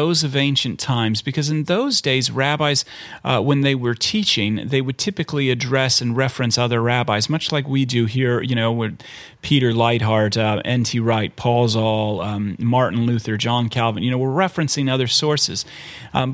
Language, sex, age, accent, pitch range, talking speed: English, male, 40-59, American, 125-155 Hz, 180 wpm